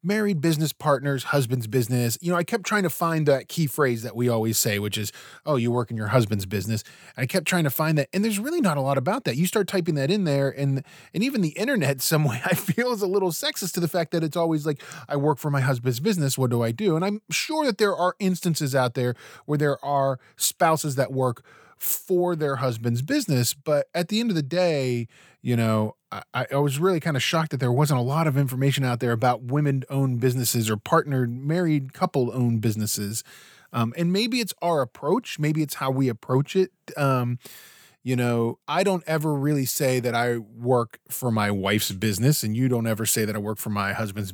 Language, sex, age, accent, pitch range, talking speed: English, male, 20-39, American, 120-165 Hz, 230 wpm